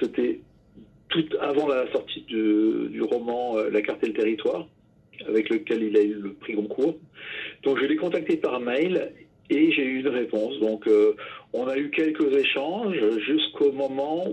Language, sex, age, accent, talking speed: English, male, 40-59, French, 180 wpm